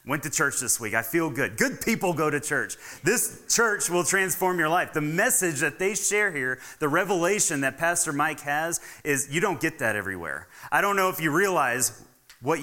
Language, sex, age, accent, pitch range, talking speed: English, male, 30-49, American, 120-170 Hz, 210 wpm